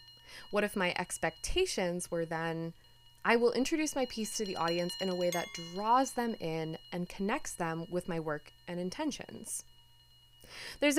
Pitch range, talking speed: 170-240 Hz, 165 wpm